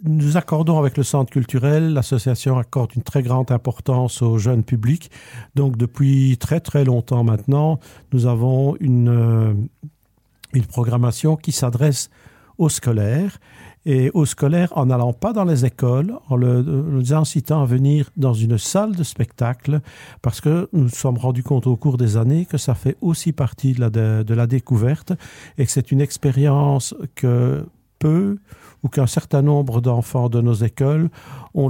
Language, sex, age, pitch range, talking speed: French, male, 50-69, 120-140 Hz, 160 wpm